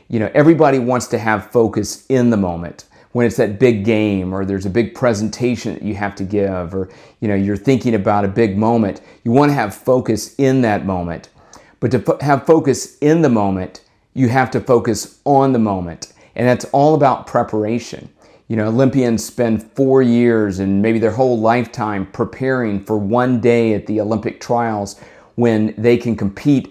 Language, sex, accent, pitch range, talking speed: English, male, American, 100-120 Hz, 190 wpm